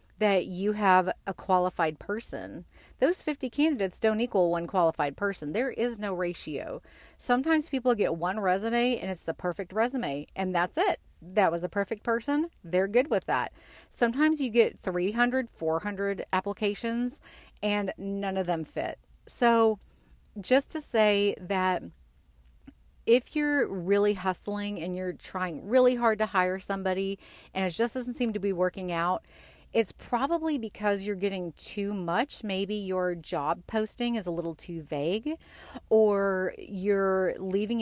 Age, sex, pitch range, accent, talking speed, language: 40-59, female, 180-230 Hz, American, 150 wpm, English